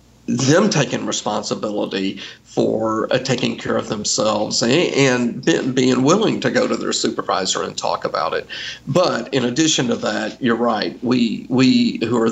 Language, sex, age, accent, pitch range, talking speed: English, male, 50-69, American, 110-130 Hz, 160 wpm